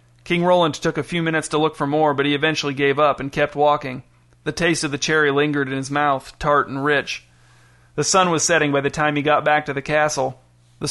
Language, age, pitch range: English, 40-59, 135-155 Hz